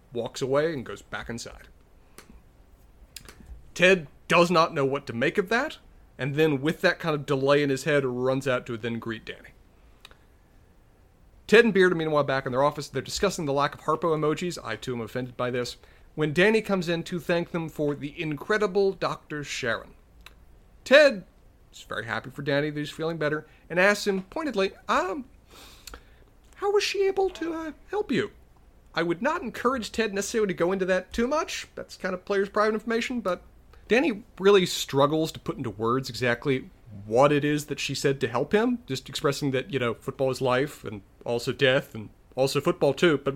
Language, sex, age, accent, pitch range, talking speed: English, male, 40-59, American, 130-195 Hz, 195 wpm